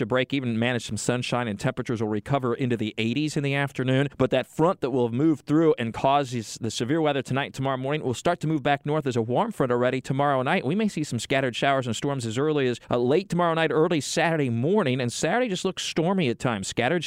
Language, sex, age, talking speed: English, male, 40-59, 250 wpm